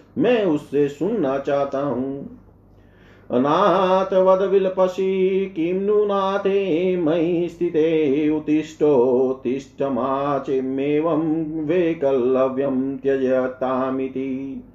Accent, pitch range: native, 130-180 Hz